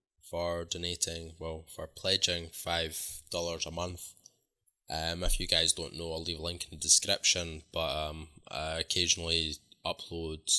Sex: male